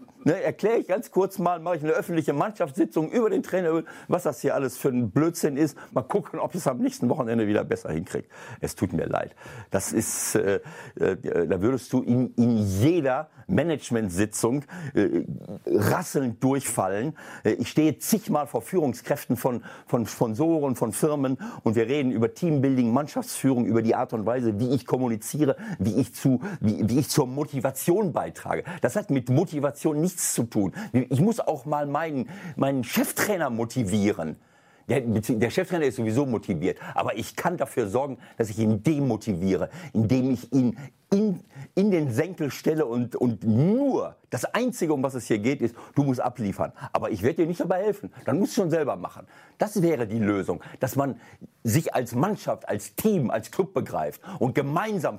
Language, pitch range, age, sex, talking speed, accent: German, 115-160 Hz, 50-69, male, 180 wpm, German